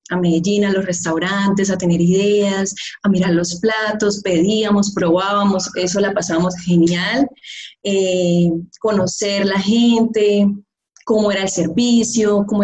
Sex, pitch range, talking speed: female, 190-235 Hz, 130 wpm